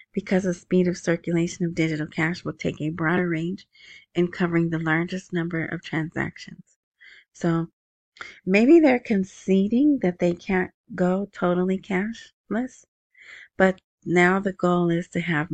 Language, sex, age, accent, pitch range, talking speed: English, female, 30-49, American, 170-210 Hz, 145 wpm